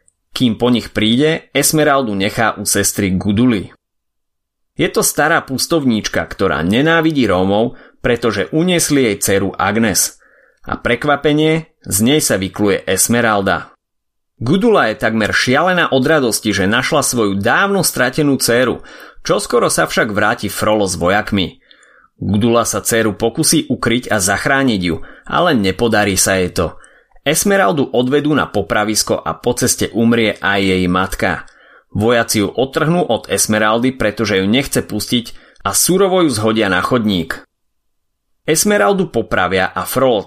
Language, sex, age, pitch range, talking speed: Slovak, male, 30-49, 100-140 Hz, 135 wpm